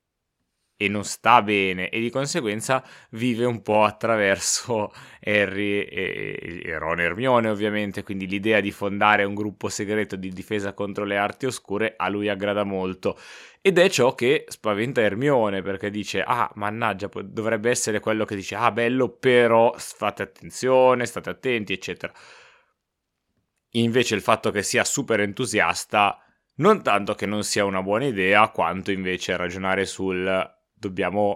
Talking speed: 145 wpm